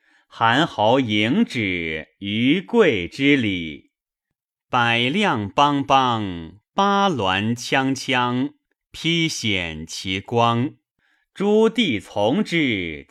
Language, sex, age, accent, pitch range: Chinese, male, 30-49, native, 100-150 Hz